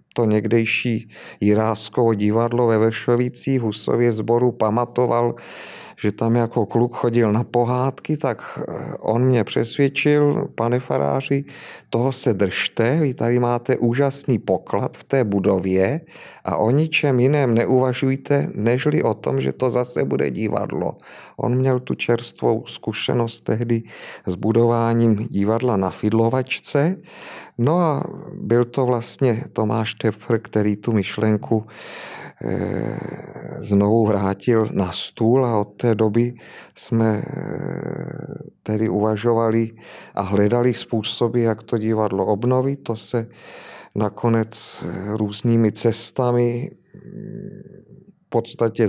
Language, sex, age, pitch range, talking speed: Czech, male, 40-59, 110-130 Hz, 115 wpm